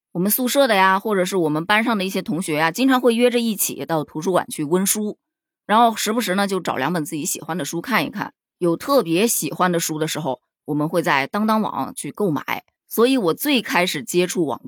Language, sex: Chinese, female